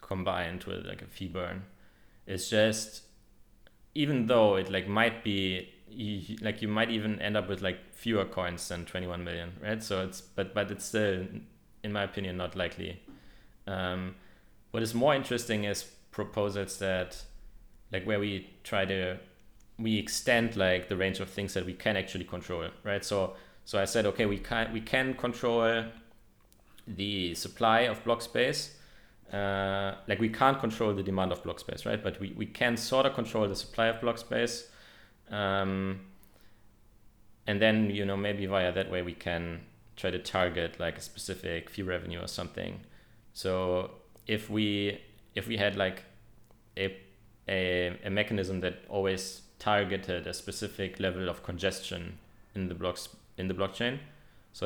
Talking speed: 165 wpm